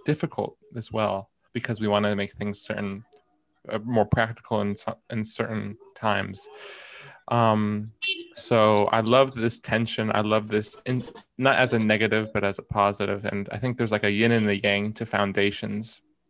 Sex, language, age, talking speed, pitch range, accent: male, English, 20-39, 175 wpm, 105-120 Hz, American